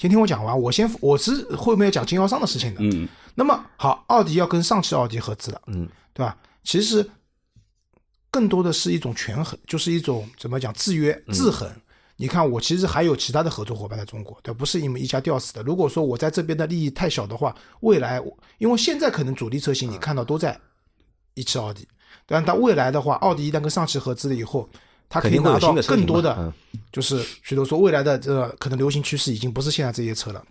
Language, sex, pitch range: Chinese, male, 120-165 Hz